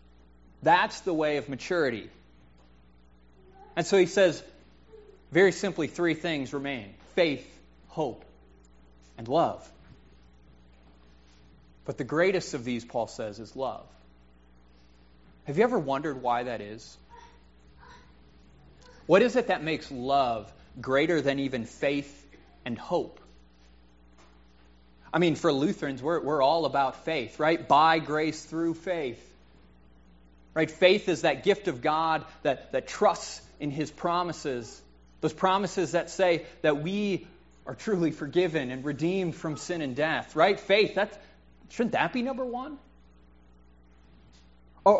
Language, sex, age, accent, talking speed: English, male, 30-49, American, 130 wpm